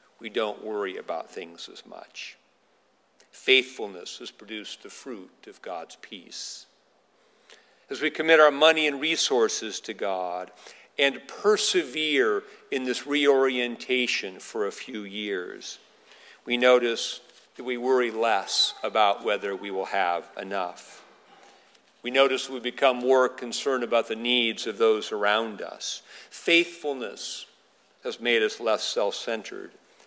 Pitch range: 115-160 Hz